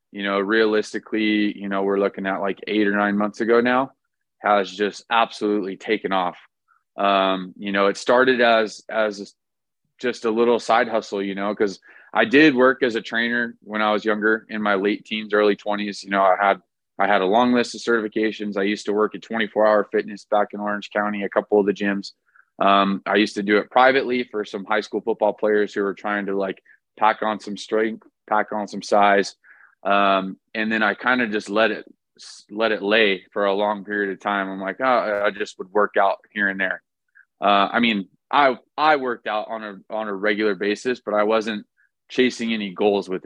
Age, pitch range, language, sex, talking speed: 20-39, 100-110 Hz, English, male, 215 wpm